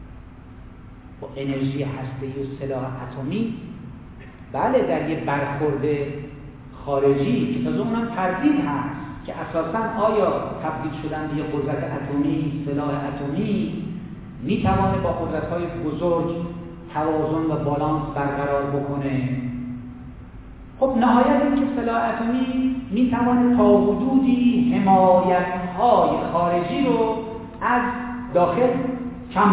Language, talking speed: Persian, 100 wpm